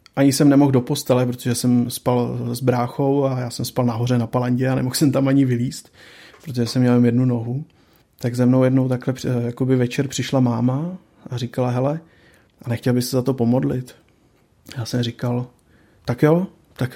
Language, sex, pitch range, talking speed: Czech, male, 120-135 Hz, 185 wpm